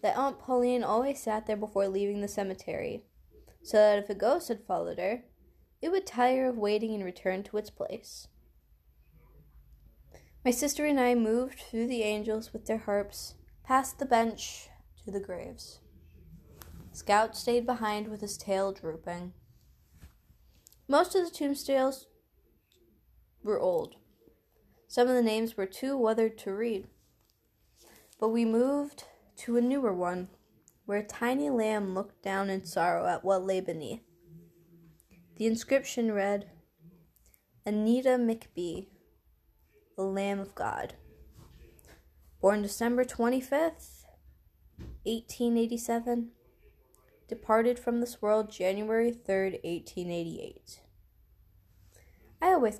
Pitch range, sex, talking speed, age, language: 175-240 Hz, female, 125 wpm, 10-29, English